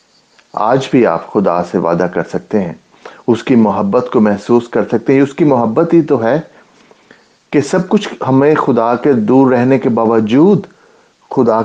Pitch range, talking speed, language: 100-135 Hz, 165 wpm, English